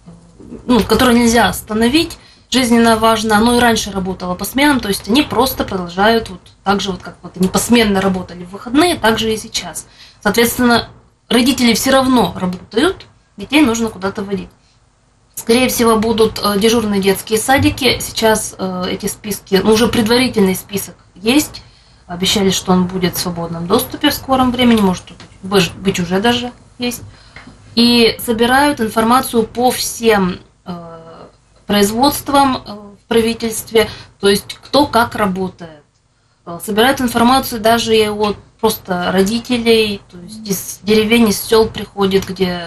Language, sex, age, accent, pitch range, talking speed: Russian, female, 20-39, native, 185-235 Hz, 140 wpm